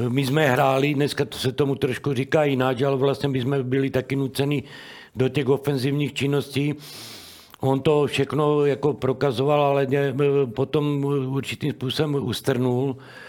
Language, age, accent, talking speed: Czech, 60-79, native, 140 wpm